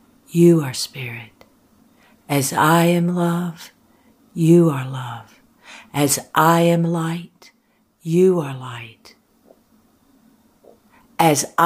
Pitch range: 155-235 Hz